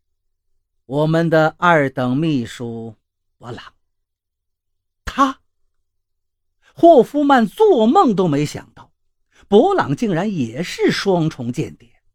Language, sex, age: Chinese, male, 50-69